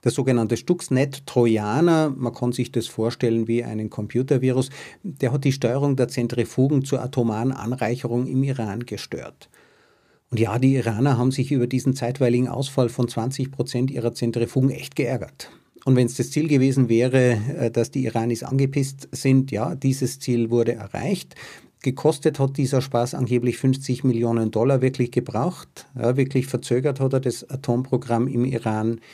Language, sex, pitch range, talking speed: German, male, 120-135 Hz, 155 wpm